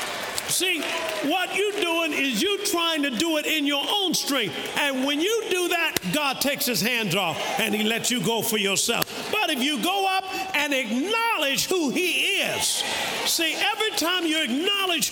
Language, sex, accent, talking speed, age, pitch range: English, male, American, 185 wpm, 50-69, 260-360 Hz